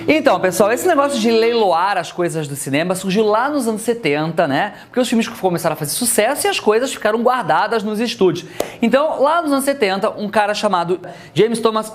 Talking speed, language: 200 wpm, Portuguese